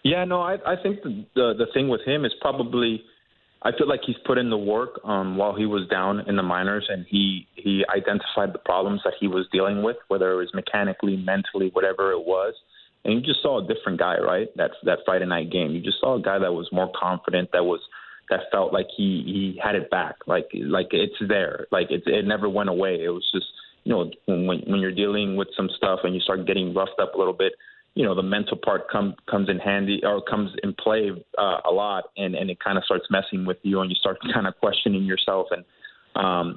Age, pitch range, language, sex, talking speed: 20-39, 95-105 Hz, English, male, 240 wpm